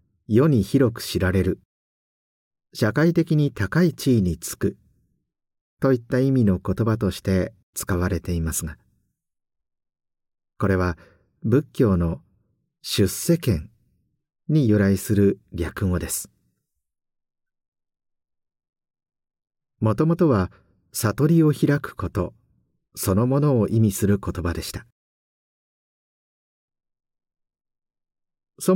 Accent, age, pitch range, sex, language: native, 50-69, 90-135 Hz, male, Japanese